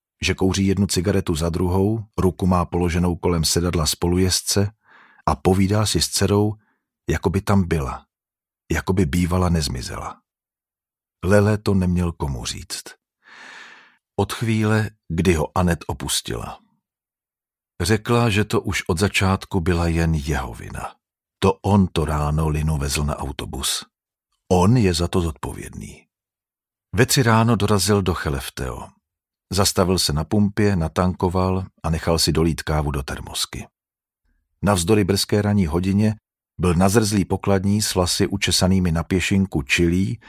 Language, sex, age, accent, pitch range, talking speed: Czech, male, 50-69, native, 80-100 Hz, 135 wpm